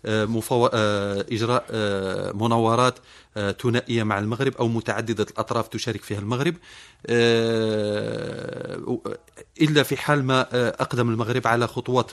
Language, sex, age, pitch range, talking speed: Arabic, male, 40-59, 115-140 Hz, 100 wpm